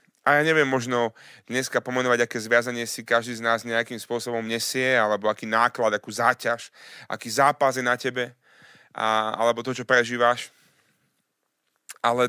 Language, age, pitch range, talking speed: Slovak, 30-49, 115-135 Hz, 150 wpm